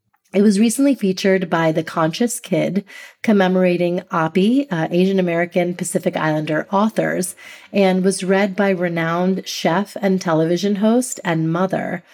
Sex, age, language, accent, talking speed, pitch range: female, 30-49, English, American, 135 wpm, 180-210 Hz